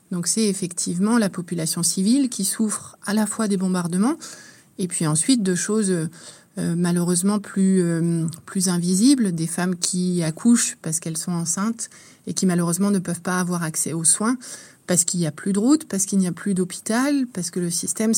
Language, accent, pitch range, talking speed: French, French, 175-210 Hz, 190 wpm